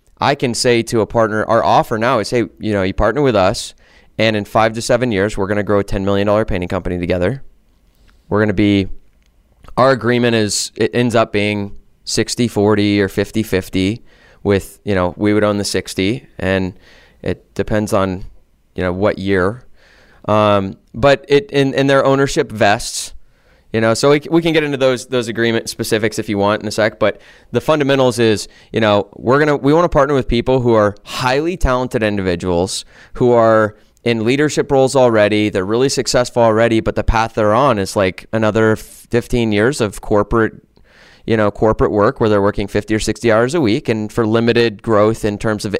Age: 20-39